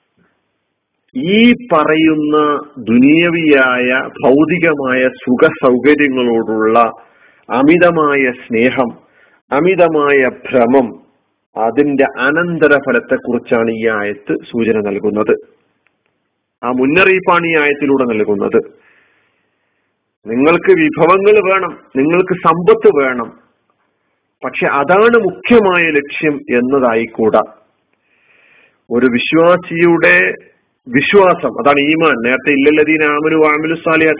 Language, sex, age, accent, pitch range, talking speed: Malayalam, male, 40-59, native, 125-175 Hz, 70 wpm